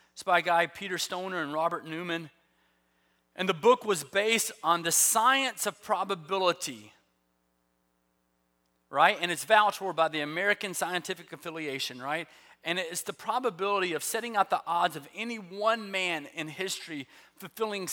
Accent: American